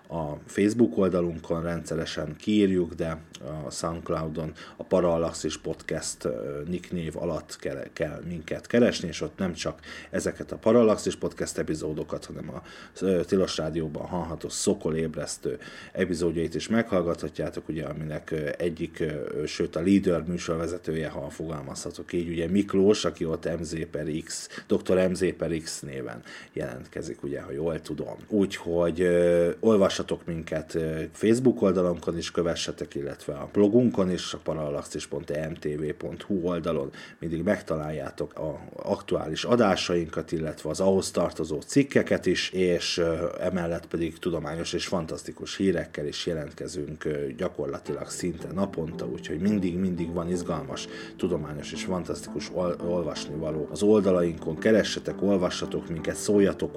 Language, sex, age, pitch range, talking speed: Hungarian, male, 30-49, 80-95 Hz, 120 wpm